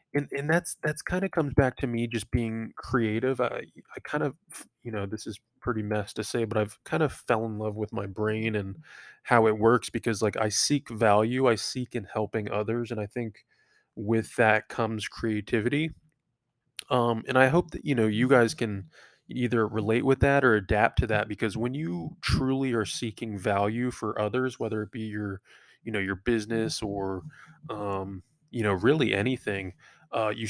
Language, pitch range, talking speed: English, 105-125 Hz, 195 wpm